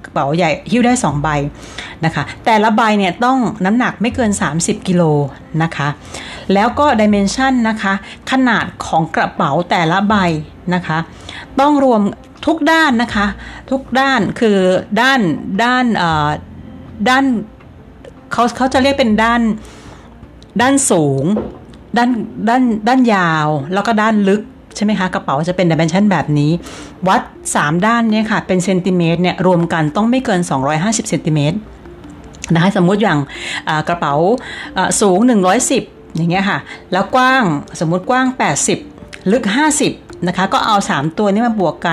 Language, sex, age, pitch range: Thai, female, 60-79, 165-235 Hz